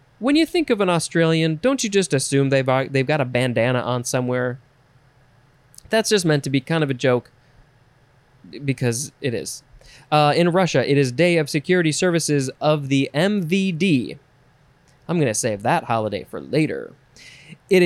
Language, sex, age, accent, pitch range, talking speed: English, male, 20-39, American, 125-160 Hz, 170 wpm